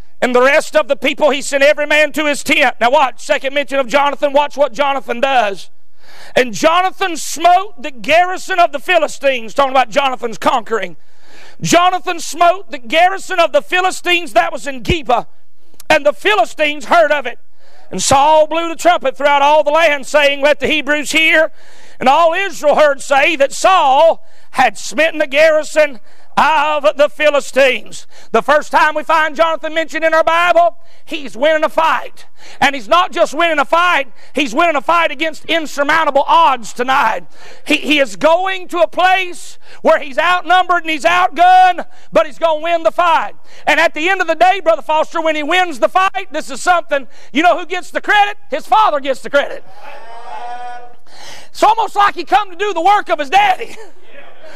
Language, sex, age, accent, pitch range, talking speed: English, male, 40-59, American, 285-345 Hz, 185 wpm